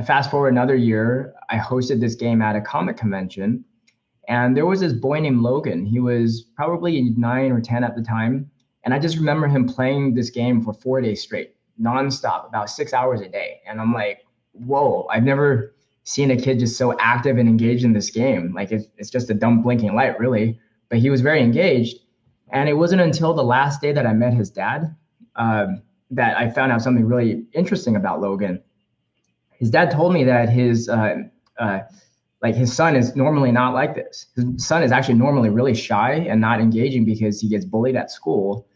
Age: 20-39